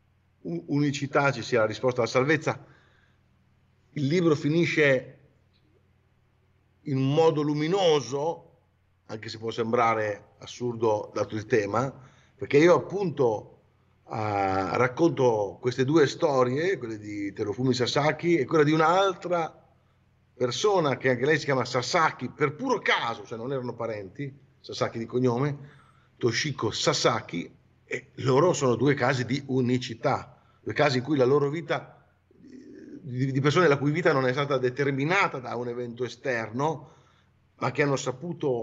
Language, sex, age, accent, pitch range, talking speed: Italian, male, 50-69, native, 120-160 Hz, 135 wpm